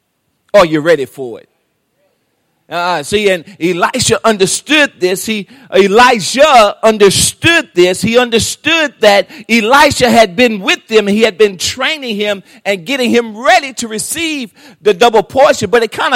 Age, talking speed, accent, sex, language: 40-59, 150 wpm, American, male, English